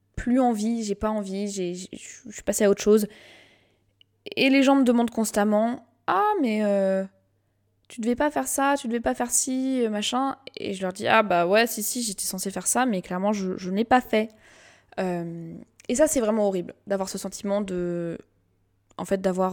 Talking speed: 215 wpm